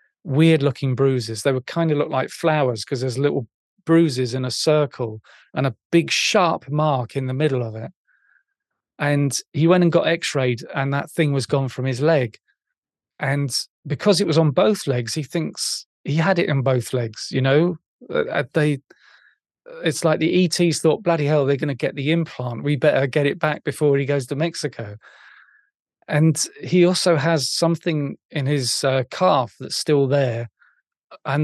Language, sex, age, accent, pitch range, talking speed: English, male, 40-59, British, 130-160 Hz, 180 wpm